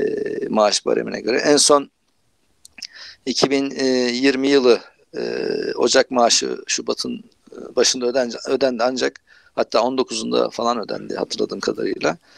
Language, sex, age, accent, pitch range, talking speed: Turkish, male, 50-69, native, 125-155 Hz, 95 wpm